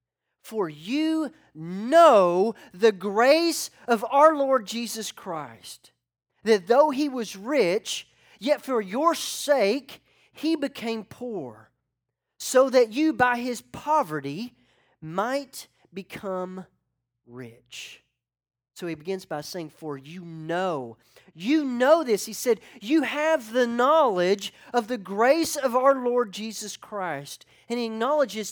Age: 40-59